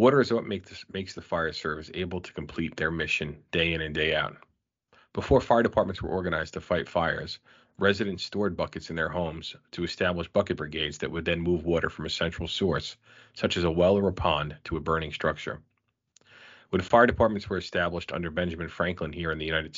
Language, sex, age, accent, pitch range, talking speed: English, male, 40-59, American, 80-95 Hz, 205 wpm